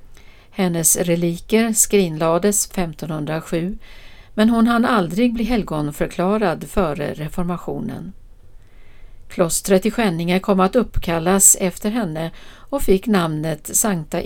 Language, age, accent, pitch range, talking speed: Swedish, 60-79, native, 155-210 Hz, 100 wpm